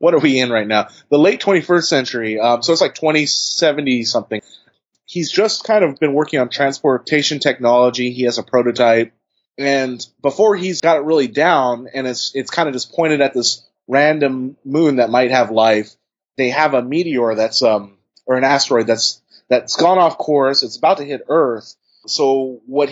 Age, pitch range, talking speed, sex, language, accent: 30-49, 120-155 Hz, 190 wpm, male, English, American